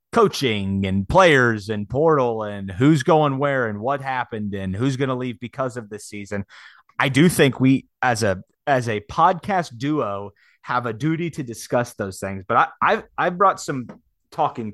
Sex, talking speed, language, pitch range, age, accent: male, 185 wpm, English, 110-150 Hz, 30-49, American